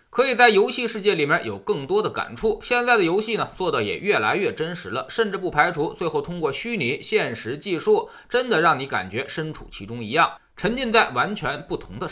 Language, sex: Chinese, male